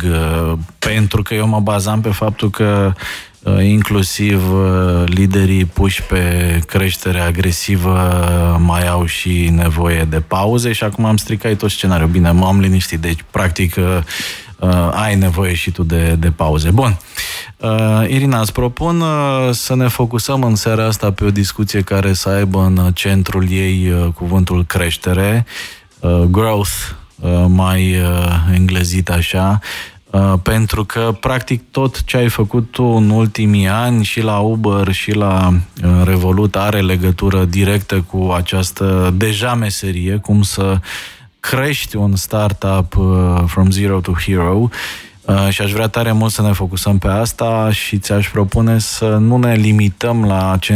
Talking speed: 135 wpm